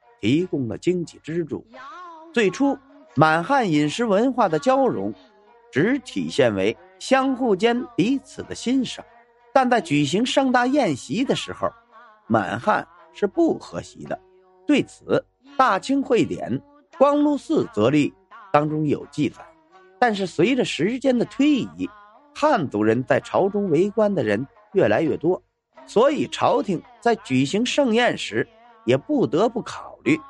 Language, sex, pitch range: Chinese, male, 185-280 Hz